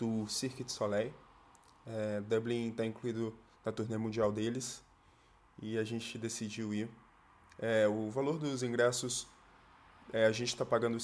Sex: male